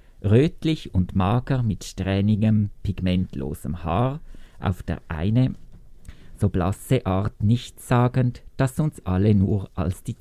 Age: 50-69